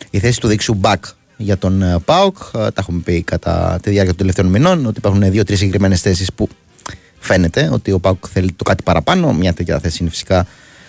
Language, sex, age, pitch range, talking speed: Greek, male, 30-49, 95-125 Hz, 200 wpm